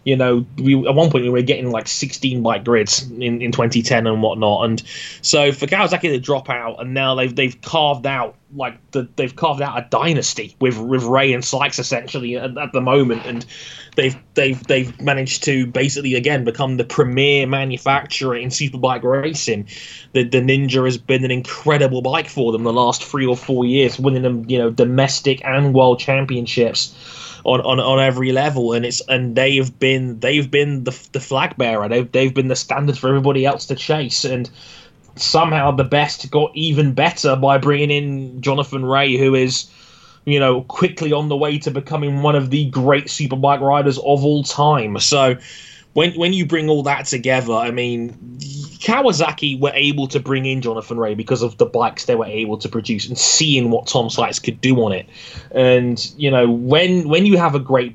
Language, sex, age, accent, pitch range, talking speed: English, male, 20-39, British, 120-140 Hz, 195 wpm